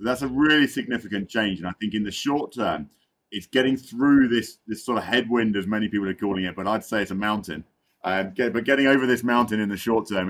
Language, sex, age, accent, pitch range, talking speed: English, male, 40-59, British, 105-125 Hz, 250 wpm